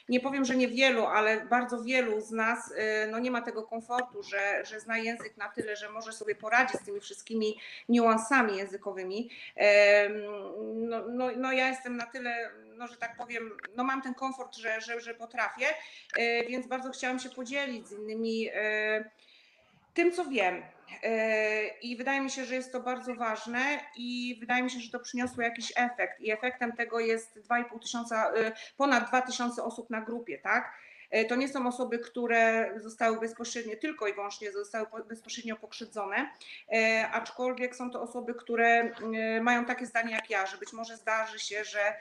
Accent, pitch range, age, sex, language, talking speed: native, 220-245 Hz, 30-49, female, Polish, 170 wpm